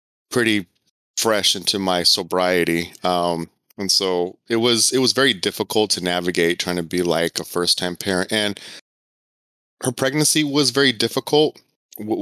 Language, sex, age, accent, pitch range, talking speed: English, male, 20-39, American, 90-105 Hz, 150 wpm